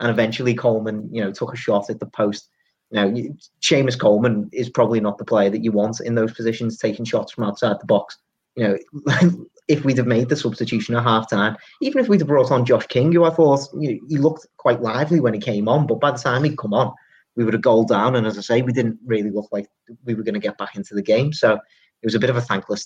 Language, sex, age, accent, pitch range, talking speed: English, male, 30-49, British, 110-130 Hz, 265 wpm